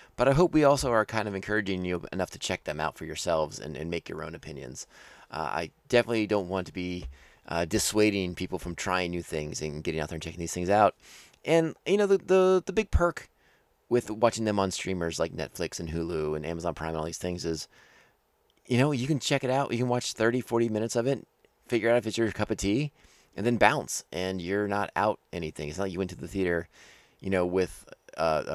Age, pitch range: 30-49, 85-115 Hz